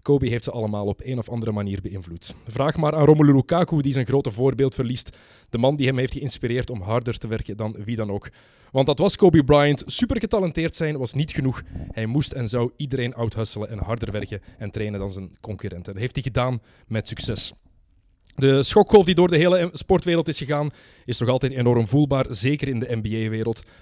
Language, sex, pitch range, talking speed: Dutch, male, 110-145 Hz, 210 wpm